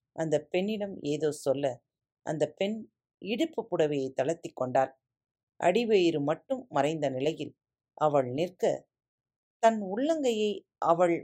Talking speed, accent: 100 wpm, native